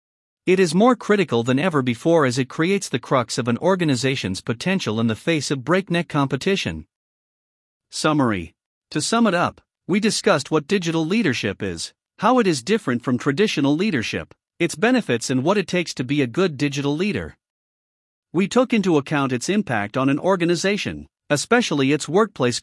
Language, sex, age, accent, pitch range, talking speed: English, male, 50-69, American, 130-185 Hz, 170 wpm